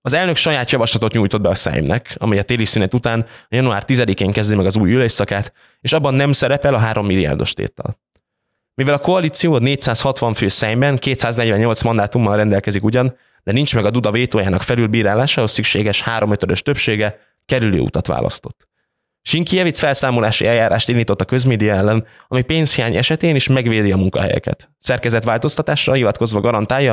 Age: 20-39